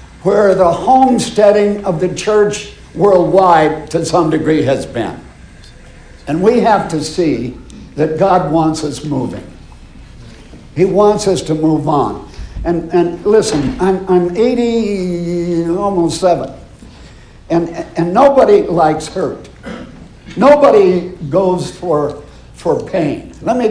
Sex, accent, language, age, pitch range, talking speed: male, American, English, 60-79, 165-210 Hz, 120 wpm